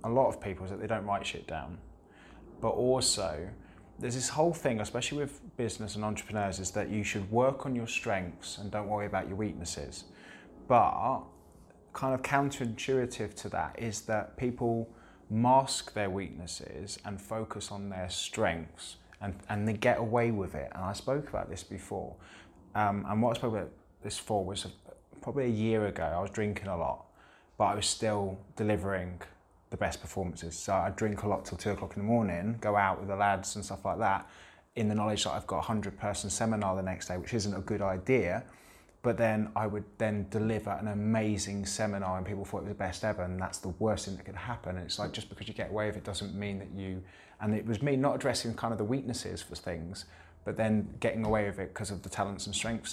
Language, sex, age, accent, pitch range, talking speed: English, male, 20-39, British, 95-110 Hz, 220 wpm